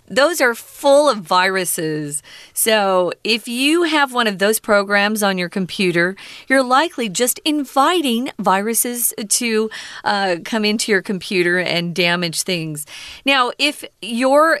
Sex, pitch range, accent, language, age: female, 180-250 Hz, American, Chinese, 40-59